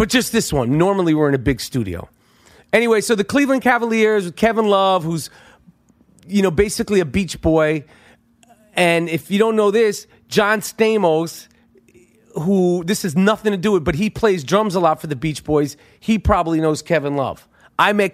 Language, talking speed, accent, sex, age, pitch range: English, 190 wpm, American, male, 30-49, 150-205 Hz